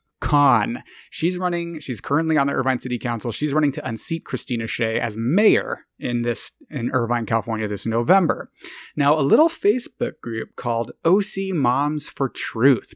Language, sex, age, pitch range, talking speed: English, male, 30-49, 120-155 Hz, 160 wpm